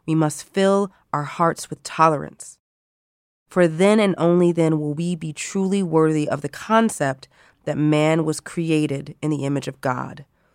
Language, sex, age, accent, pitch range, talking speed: English, female, 30-49, American, 145-170 Hz, 165 wpm